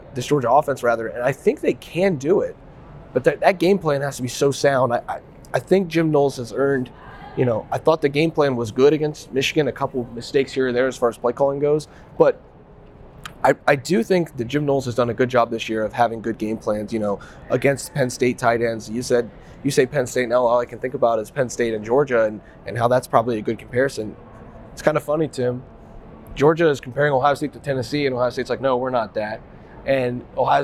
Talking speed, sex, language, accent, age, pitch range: 245 wpm, male, English, American, 20-39, 120-150 Hz